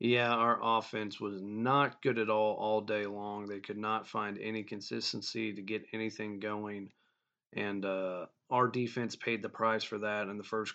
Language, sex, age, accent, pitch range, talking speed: English, male, 30-49, American, 105-115 Hz, 185 wpm